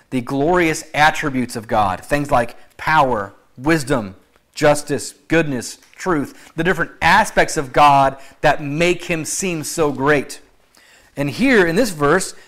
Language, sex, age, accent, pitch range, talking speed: English, male, 30-49, American, 145-180 Hz, 135 wpm